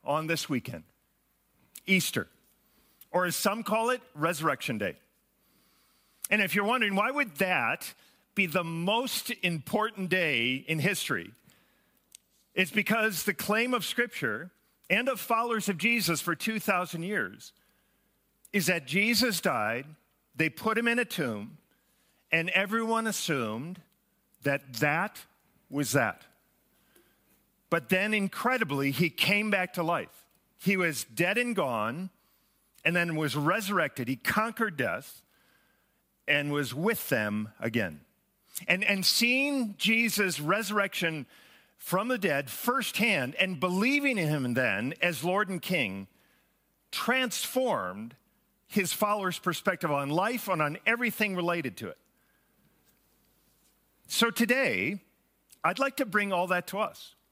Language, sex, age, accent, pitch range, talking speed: English, male, 50-69, American, 165-220 Hz, 125 wpm